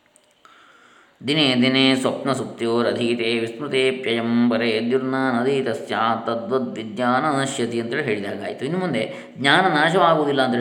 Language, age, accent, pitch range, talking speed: Kannada, 20-39, native, 115-150 Hz, 115 wpm